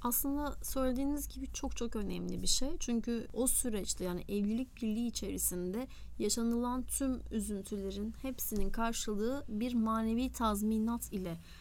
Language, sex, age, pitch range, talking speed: Turkish, female, 30-49, 215-265 Hz, 125 wpm